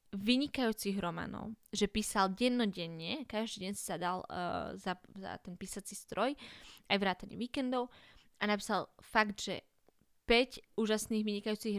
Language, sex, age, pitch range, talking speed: Slovak, female, 20-39, 200-235 Hz, 130 wpm